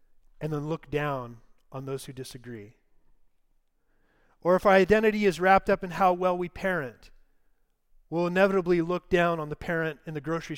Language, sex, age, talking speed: English, male, 40-59, 170 wpm